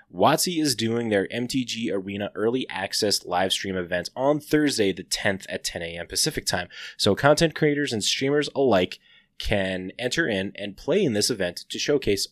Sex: male